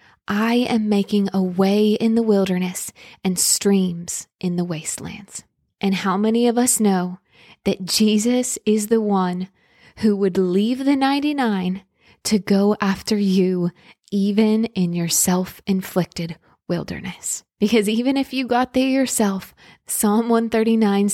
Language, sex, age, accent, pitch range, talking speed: English, female, 20-39, American, 195-245 Hz, 135 wpm